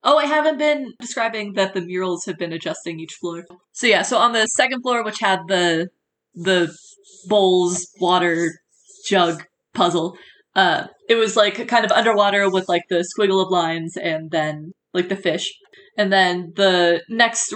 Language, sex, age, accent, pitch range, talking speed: English, female, 20-39, American, 175-205 Hz, 170 wpm